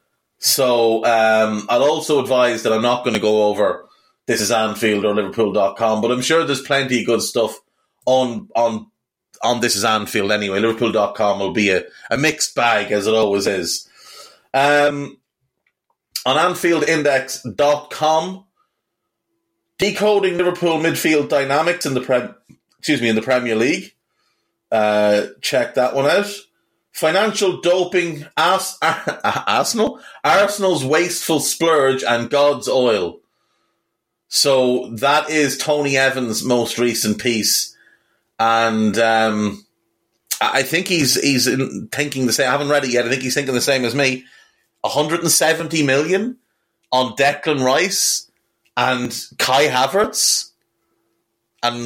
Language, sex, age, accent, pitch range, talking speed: English, male, 30-49, Irish, 115-150 Hz, 135 wpm